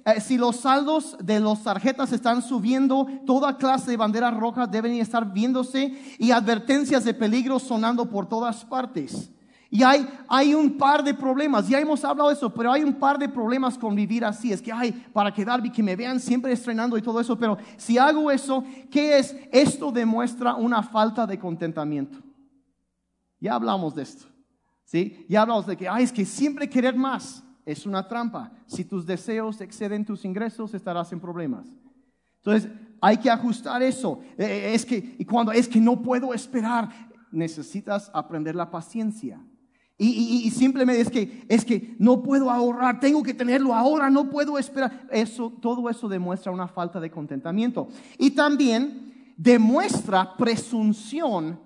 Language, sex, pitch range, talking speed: Spanish, male, 220-265 Hz, 170 wpm